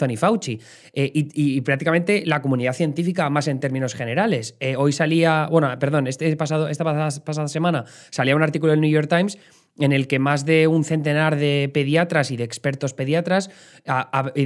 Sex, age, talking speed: male, 20-39, 180 wpm